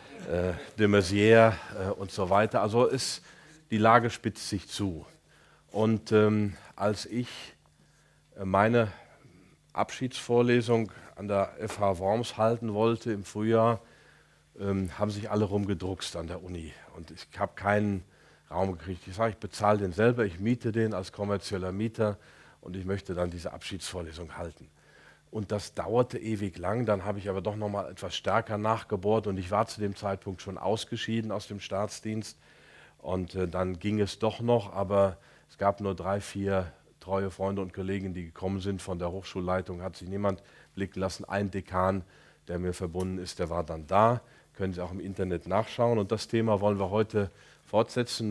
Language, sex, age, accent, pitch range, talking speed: German, male, 40-59, German, 95-110 Hz, 165 wpm